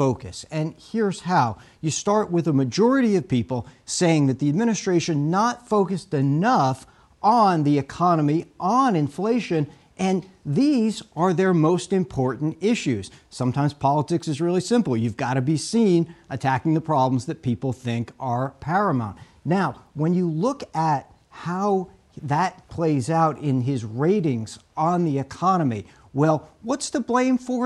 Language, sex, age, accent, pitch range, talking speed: English, male, 50-69, American, 130-185 Hz, 150 wpm